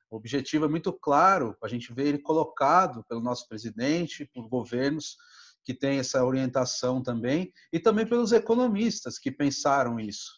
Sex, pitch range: male, 130-180 Hz